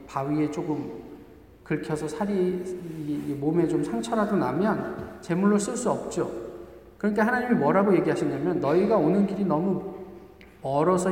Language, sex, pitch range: Korean, male, 170-220 Hz